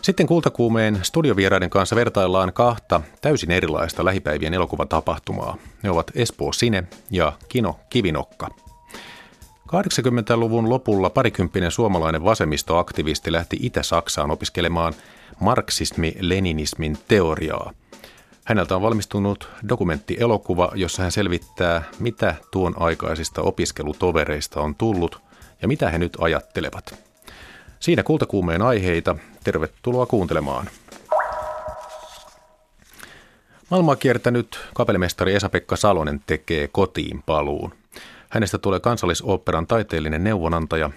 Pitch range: 85-115 Hz